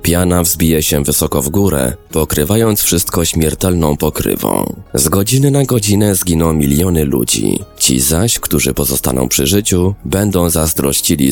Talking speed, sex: 135 wpm, male